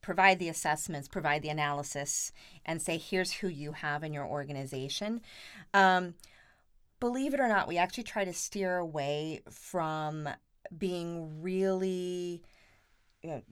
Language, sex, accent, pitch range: English, female, American, 150-185 Hz